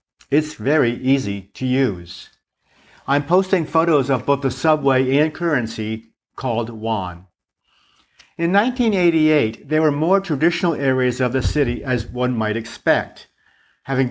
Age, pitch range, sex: 50-69, 120-155 Hz, male